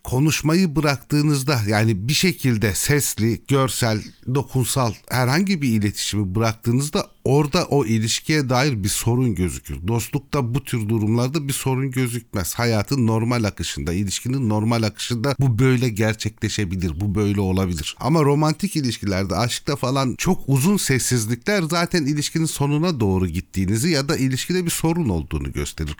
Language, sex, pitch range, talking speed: Turkish, male, 95-140 Hz, 135 wpm